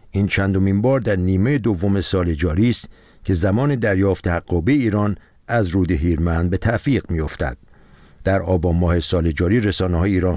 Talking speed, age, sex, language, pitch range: 160 wpm, 50-69, male, Persian, 90-110 Hz